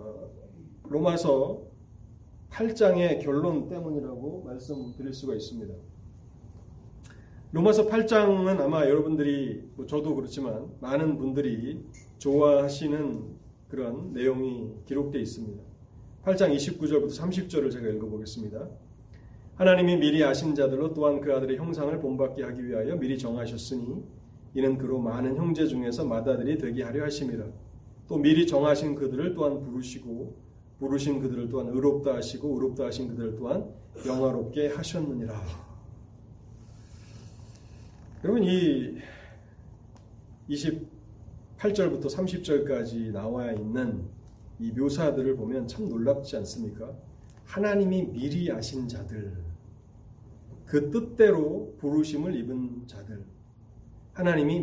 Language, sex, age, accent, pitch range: Korean, male, 30-49, native, 110-145 Hz